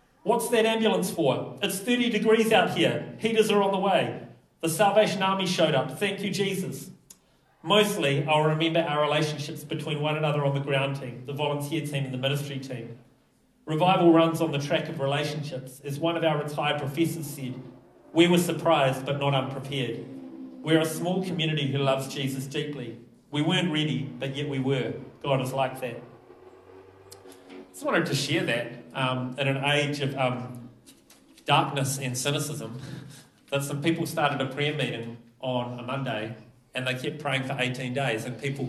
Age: 40-59